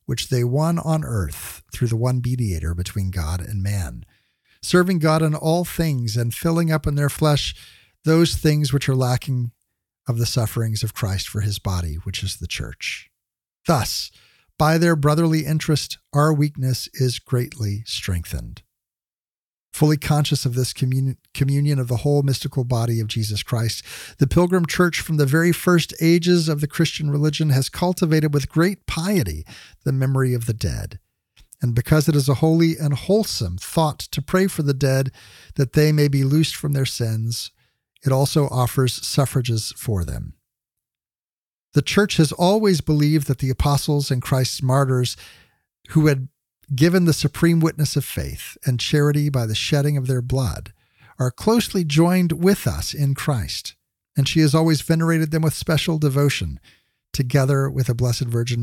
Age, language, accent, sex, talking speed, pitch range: 50-69, English, American, male, 165 wpm, 120-155 Hz